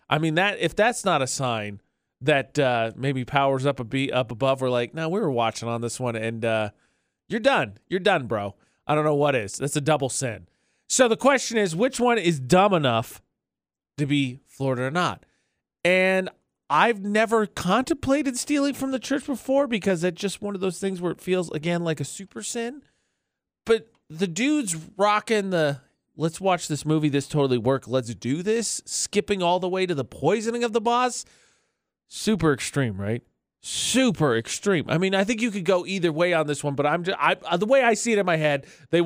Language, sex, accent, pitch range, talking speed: English, male, American, 130-200 Hz, 205 wpm